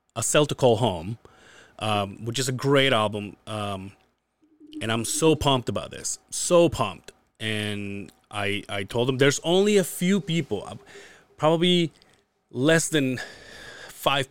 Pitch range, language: 110-135 Hz, English